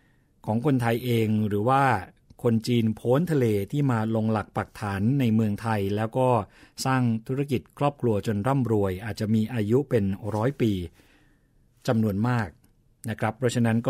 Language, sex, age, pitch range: Thai, male, 60-79, 105-130 Hz